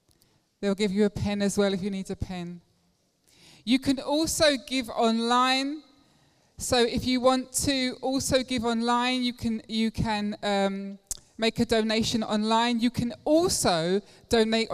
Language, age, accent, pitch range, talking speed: English, 20-39, British, 185-240 Hz, 155 wpm